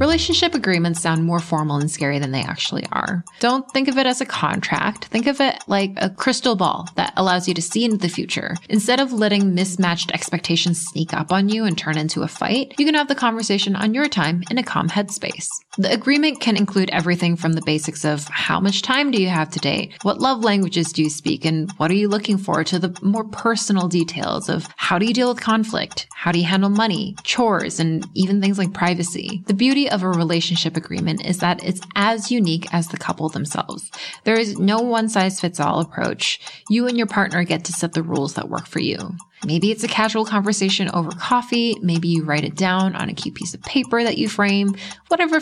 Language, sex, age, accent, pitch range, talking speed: English, female, 20-39, American, 170-220 Hz, 225 wpm